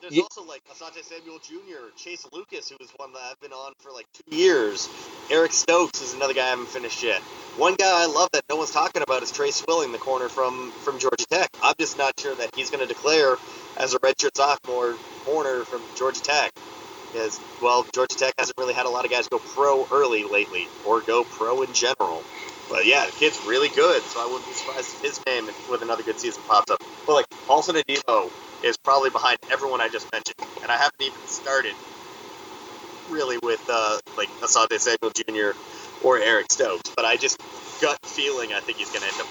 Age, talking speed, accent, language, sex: 30-49, 215 wpm, American, English, male